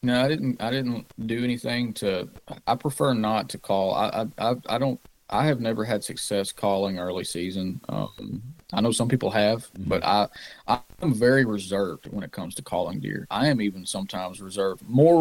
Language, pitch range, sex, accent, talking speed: English, 100-120 Hz, male, American, 195 wpm